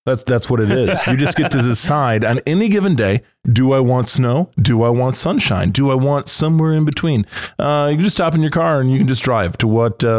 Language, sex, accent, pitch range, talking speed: English, male, American, 110-135 Hz, 260 wpm